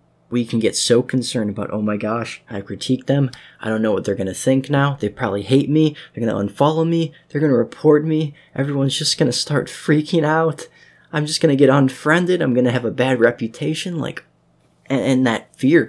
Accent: American